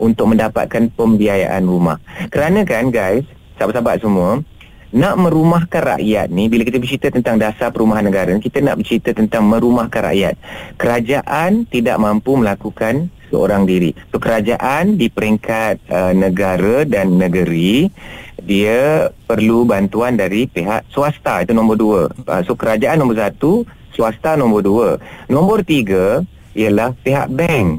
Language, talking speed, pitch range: Malay, 135 wpm, 105-150 Hz